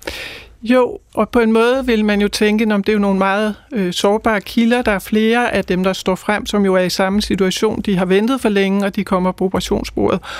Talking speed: 235 wpm